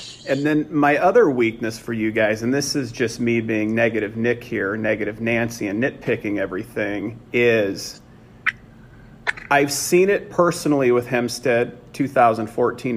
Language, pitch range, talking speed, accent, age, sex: English, 115-135 Hz, 140 wpm, American, 40-59, male